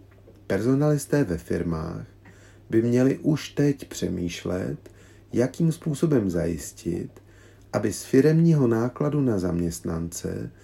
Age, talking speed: 40-59, 95 wpm